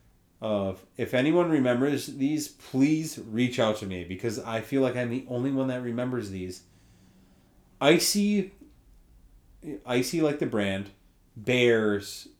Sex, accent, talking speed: male, American, 130 wpm